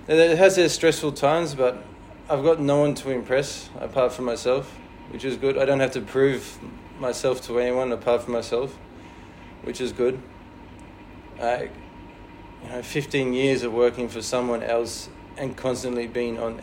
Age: 20-39